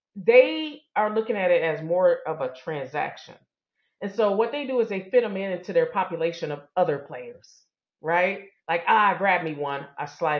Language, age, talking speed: English, 40-59, 200 wpm